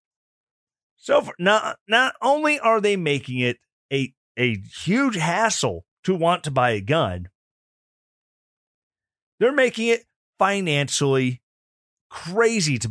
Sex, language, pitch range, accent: male, English, 125-185 Hz, American